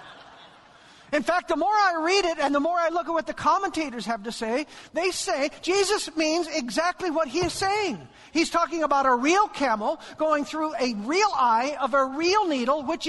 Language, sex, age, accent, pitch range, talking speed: English, male, 50-69, American, 275-360 Hz, 200 wpm